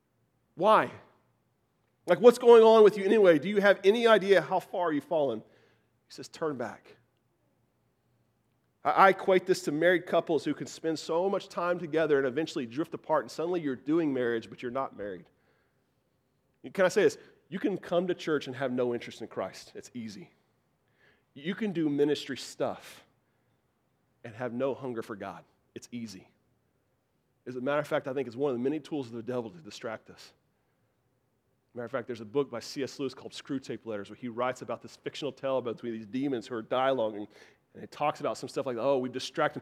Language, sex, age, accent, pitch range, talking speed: English, male, 40-59, American, 120-155 Hz, 200 wpm